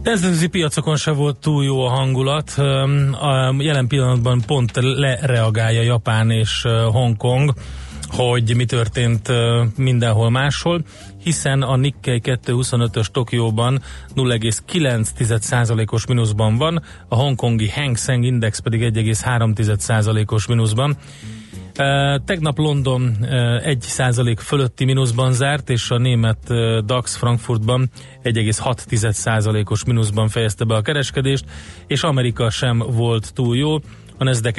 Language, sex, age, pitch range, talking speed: Hungarian, male, 30-49, 110-130 Hz, 110 wpm